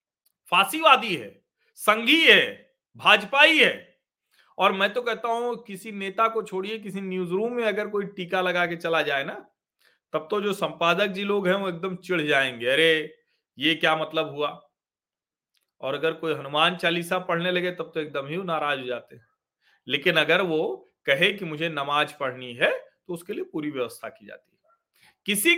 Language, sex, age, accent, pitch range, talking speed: Hindi, male, 40-59, native, 170-270 Hz, 175 wpm